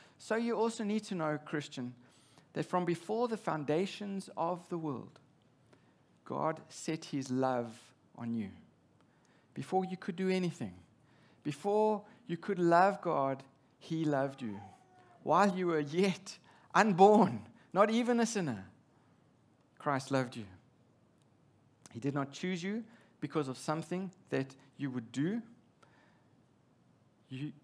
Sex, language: male, English